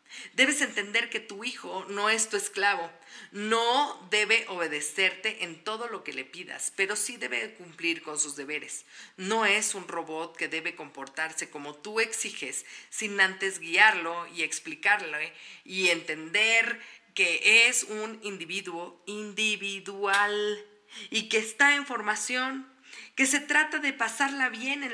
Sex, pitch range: female, 185-240 Hz